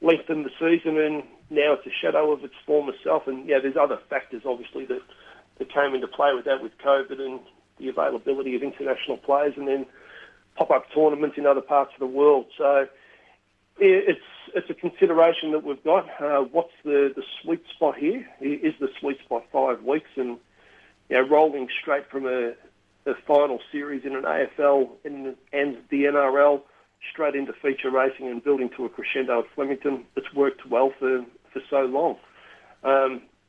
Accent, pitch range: Australian, 135-155 Hz